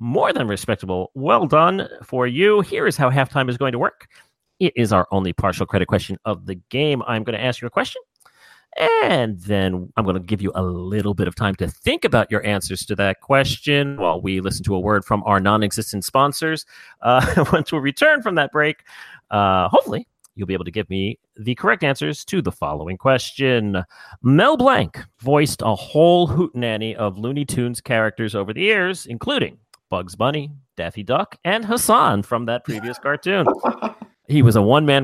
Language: English